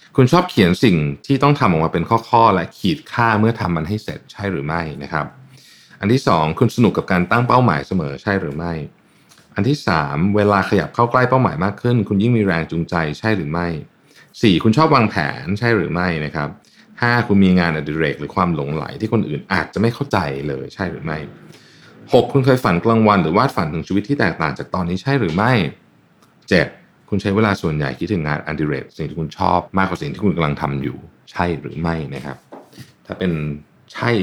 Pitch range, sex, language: 75-110 Hz, male, Thai